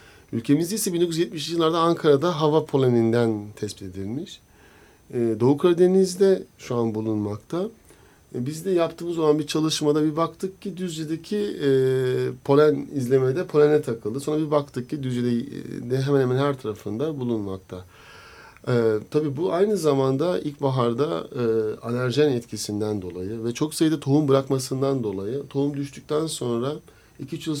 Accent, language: native, Turkish